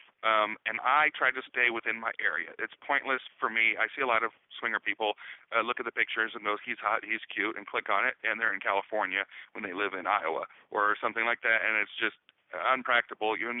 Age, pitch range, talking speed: 30-49, 110-125 Hz, 235 wpm